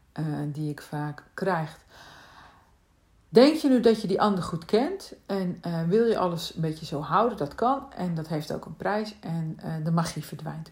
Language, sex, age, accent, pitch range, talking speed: Dutch, female, 50-69, Dutch, 155-200 Hz, 200 wpm